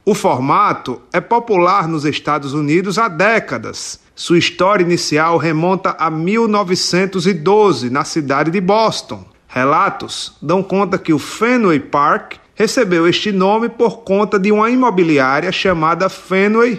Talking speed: 130 wpm